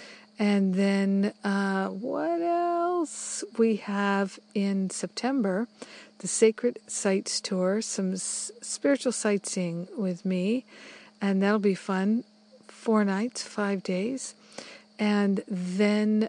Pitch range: 185-215 Hz